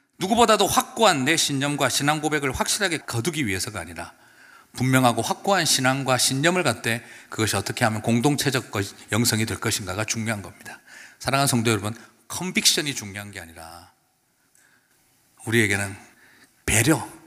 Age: 40-59